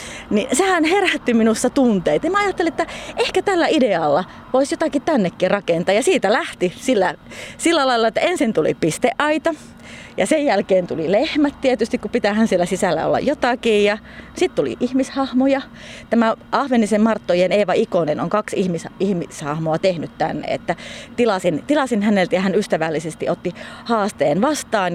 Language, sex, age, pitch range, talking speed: Finnish, female, 30-49, 180-250 Hz, 150 wpm